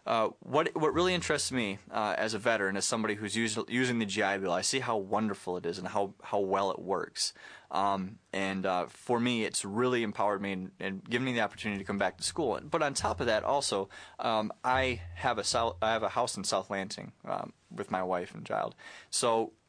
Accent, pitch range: American, 95-110 Hz